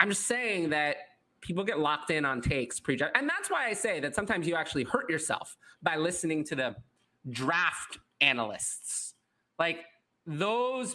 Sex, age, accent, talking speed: male, 30-49, American, 165 wpm